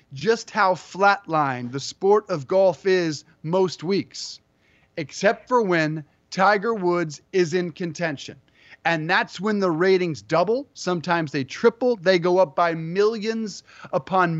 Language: English